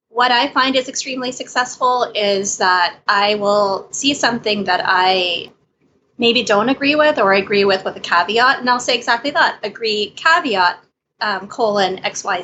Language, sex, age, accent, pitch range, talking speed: English, female, 20-39, American, 195-250 Hz, 175 wpm